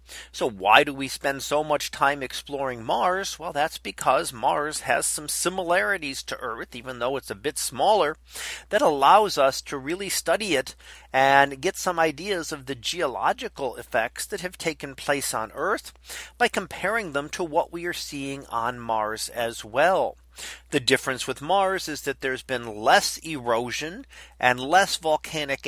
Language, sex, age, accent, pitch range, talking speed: English, male, 40-59, American, 125-185 Hz, 165 wpm